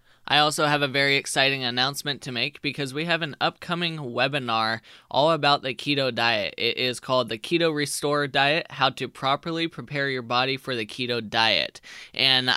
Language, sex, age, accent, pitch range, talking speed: English, male, 20-39, American, 115-140 Hz, 180 wpm